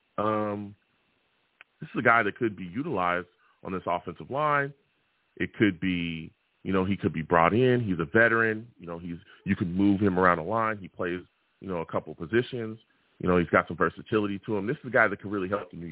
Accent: American